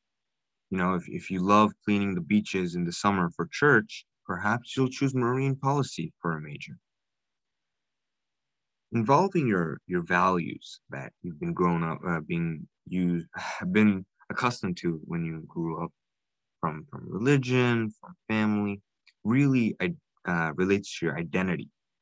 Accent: American